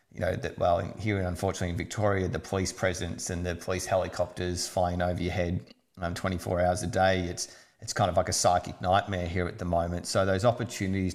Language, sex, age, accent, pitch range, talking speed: English, male, 30-49, Australian, 90-100 Hz, 210 wpm